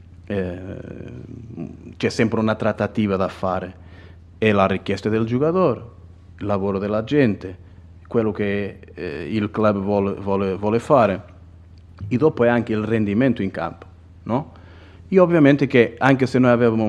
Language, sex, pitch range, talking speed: Hungarian, male, 90-110 Hz, 145 wpm